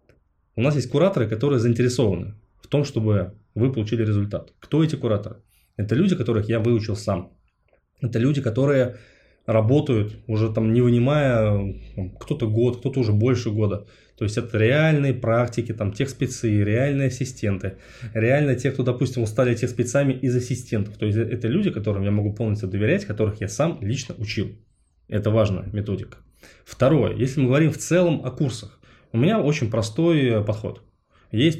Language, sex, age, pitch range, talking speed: Russian, male, 20-39, 105-135 Hz, 155 wpm